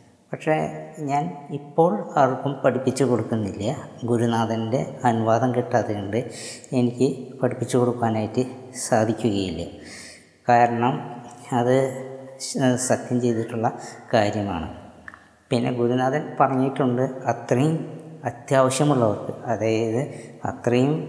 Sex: female